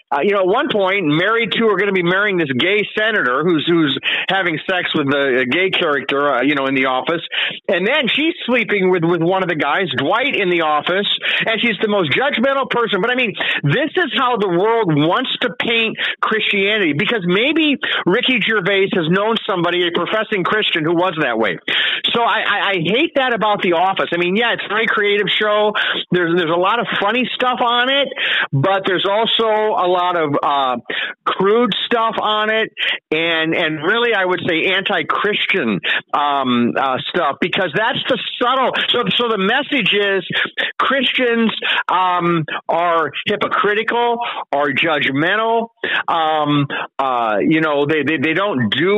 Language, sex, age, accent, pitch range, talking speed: English, male, 40-59, American, 175-235 Hz, 185 wpm